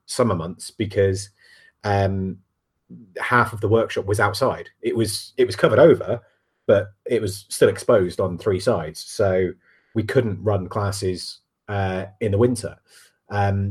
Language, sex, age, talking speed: English, male, 30-49, 150 wpm